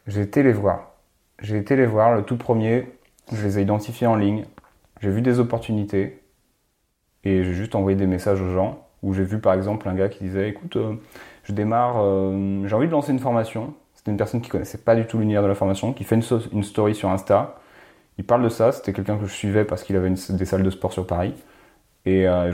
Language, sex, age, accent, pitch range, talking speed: French, male, 30-49, French, 95-115 Hz, 235 wpm